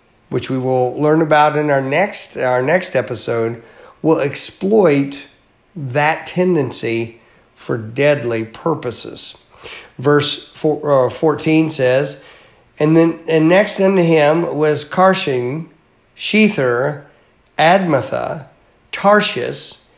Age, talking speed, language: 50-69, 100 wpm, English